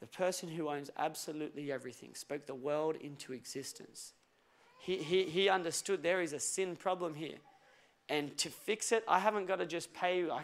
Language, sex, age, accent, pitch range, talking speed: English, male, 30-49, Australian, 165-215 Hz, 185 wpm